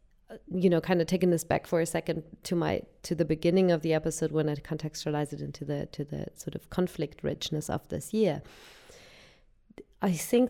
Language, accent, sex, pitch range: English, German, female, 155-185 Hz